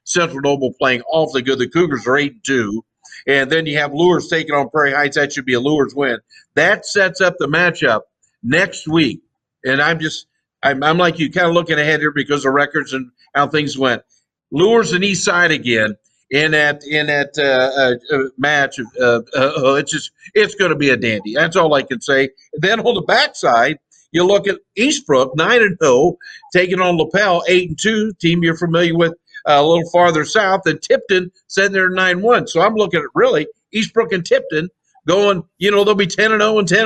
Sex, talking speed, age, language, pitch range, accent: male, 210 wpm, 50-69, English, 140-185 Hz, American